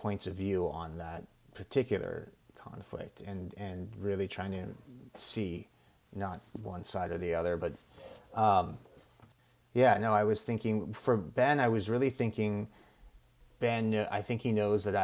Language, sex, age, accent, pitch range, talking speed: English, male, 30-49, American, 100-115 Hz, 150 wpm